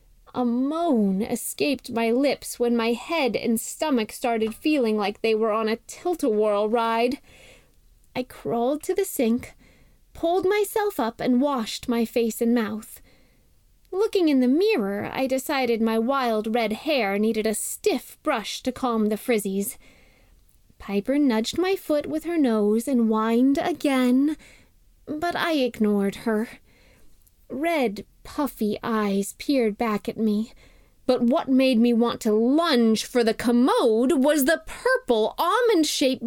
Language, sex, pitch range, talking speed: English, female, 230-310 Hz, 145 wpm